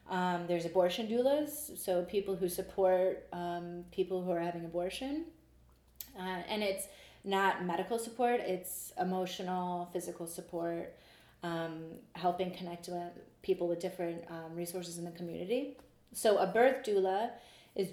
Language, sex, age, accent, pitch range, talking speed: English, female, 30-49, American, 175-195 Hz, 135 wpm